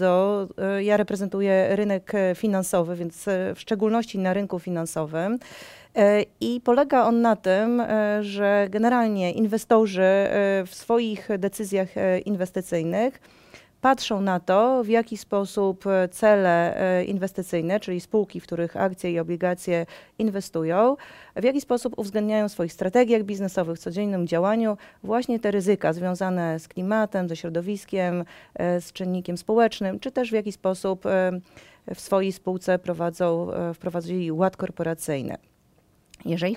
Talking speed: 125 wpm